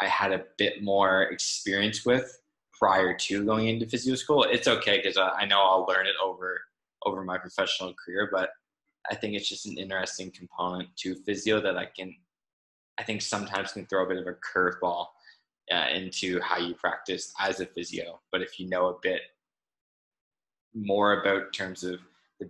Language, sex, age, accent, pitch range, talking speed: English, male, 20-39, American, 90-100 Hz, 185 wpm